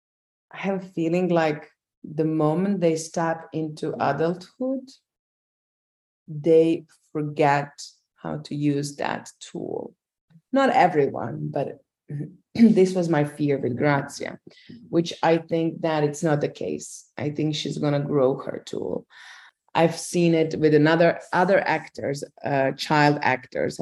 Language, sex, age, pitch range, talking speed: English, female, 30-49, 145-165 Hz, 135 wpm